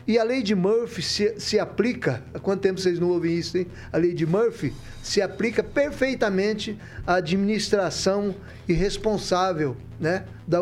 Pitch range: 170-220 Hz